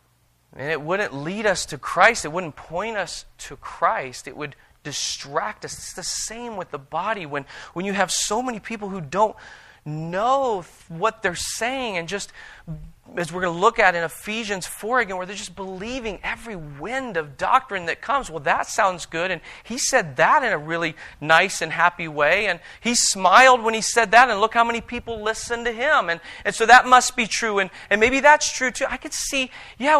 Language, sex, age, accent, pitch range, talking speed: English, male, 30-49, American, 160-235 Hz, 210 wpm